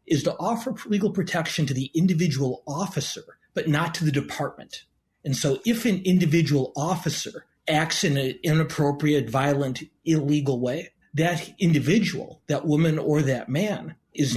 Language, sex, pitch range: English, male, 130-160 Hz